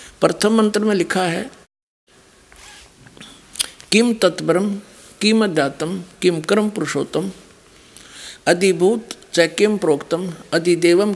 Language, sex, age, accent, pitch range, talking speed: Hindi, male, 60-79, native, 155-210 Hz, 85 wpm